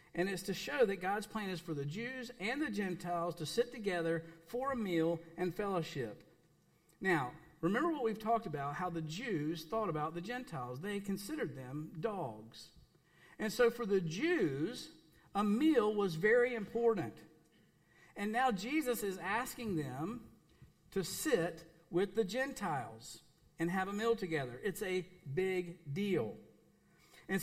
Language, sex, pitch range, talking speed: English, male, 155-215 Hz, 155 wpm